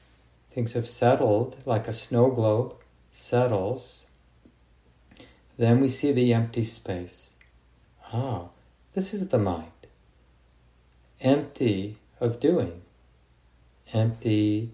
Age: 50-69